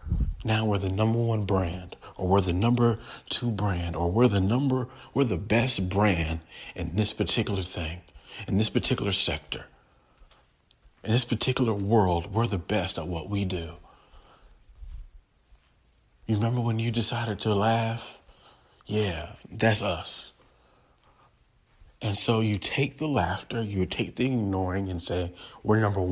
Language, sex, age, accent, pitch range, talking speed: English, male, 40-59, American, 95-130 Hz, 145 wpm